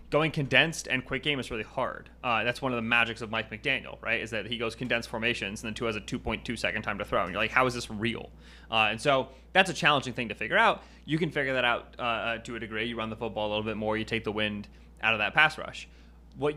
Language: English